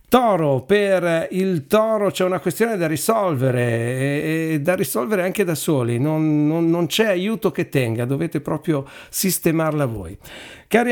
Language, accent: Italian, native